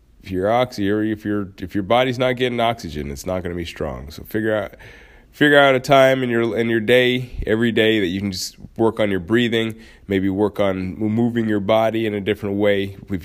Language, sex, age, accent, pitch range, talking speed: English, male, 30-49, American, 100-125 Hz, 230 wpm